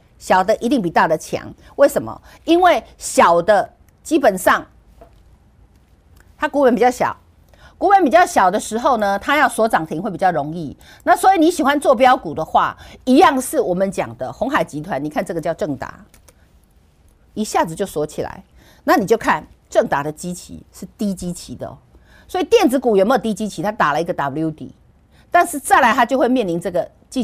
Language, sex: Chinese, female